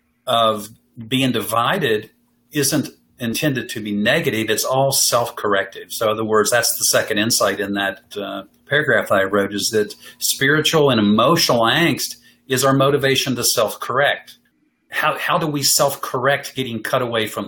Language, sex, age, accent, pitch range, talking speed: English, male, 50-69, American, 110-140 Hz, 155 wpm